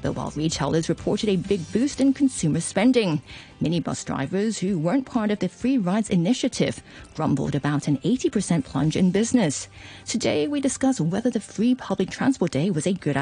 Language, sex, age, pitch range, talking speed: English, female, 40-59, 155-225 Hz, 175 wpm